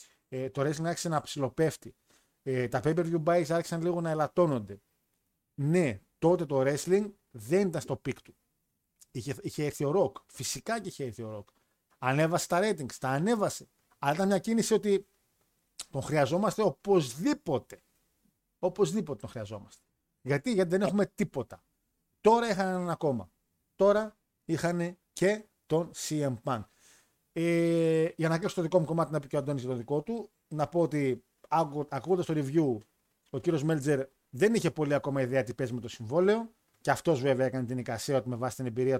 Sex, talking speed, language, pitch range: male, 170 wpm, Greek, 130-180 Hz